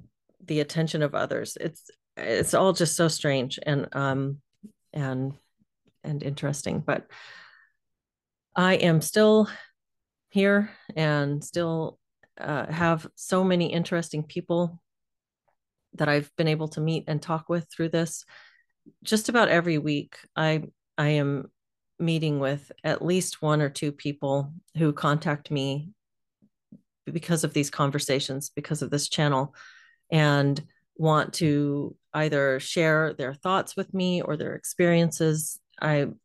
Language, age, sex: English, 40-59, female